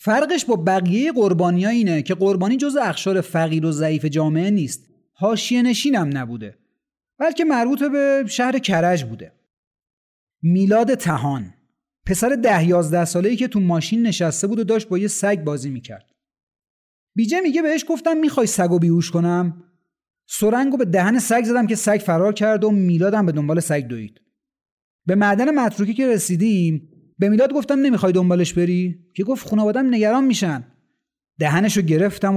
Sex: male